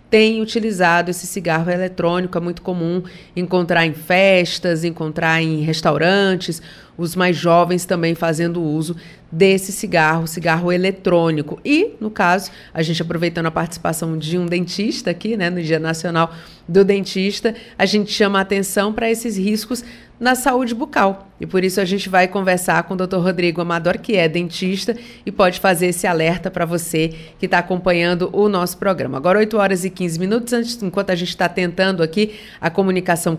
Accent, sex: Brazilian, female